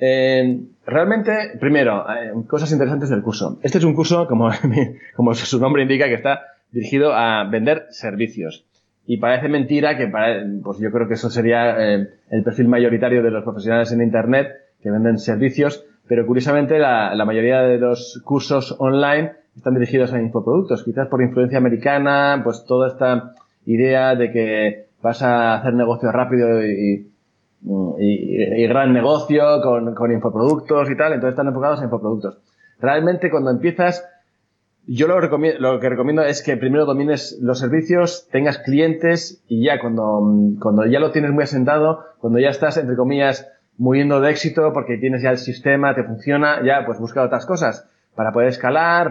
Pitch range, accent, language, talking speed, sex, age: 115-145 Hz, Spanish, Spanish, 175 wpm, male, 20-39